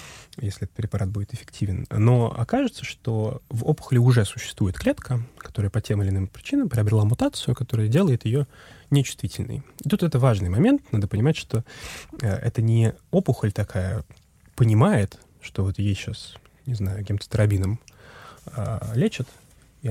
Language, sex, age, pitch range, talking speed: Russian, male, 20-39, 105-135 Hz, 145 wpm